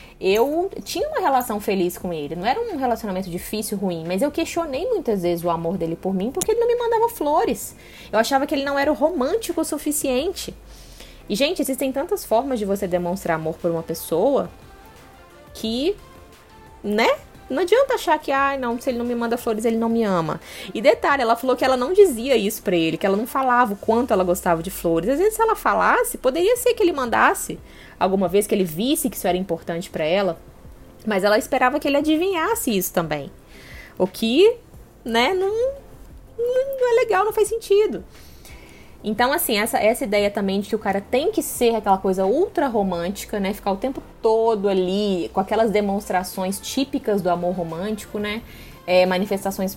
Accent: Brazilian